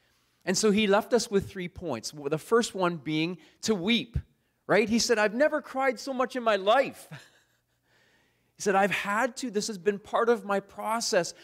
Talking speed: 195 wpm